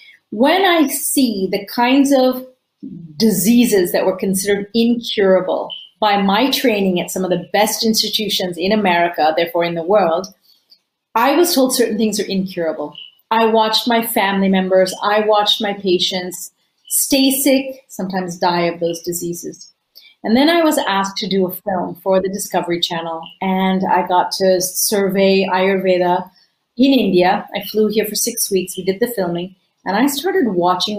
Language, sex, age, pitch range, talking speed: English, female, 40-59, 180-240 Hz, 165 wpm